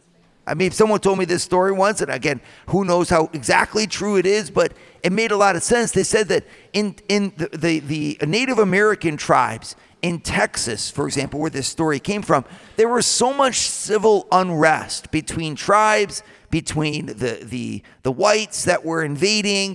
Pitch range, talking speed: 160-205 Hz, 185 wpm